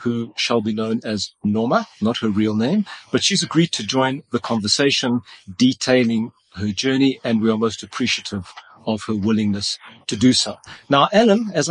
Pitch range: 110-140 Hz